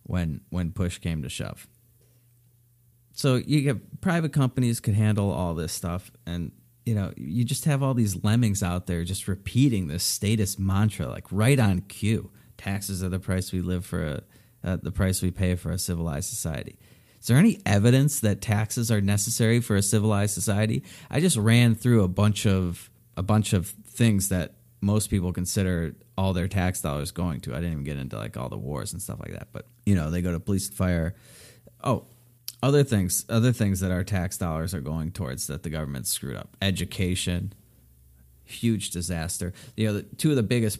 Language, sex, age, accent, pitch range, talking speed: English, male, 30-49, American, 90-115 Hz, 200 wpm